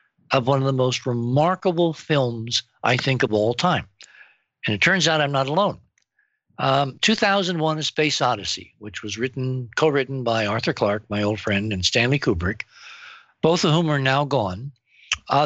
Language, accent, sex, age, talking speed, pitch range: English, American, male, 60-79, 175 wpm, 120-155 Hz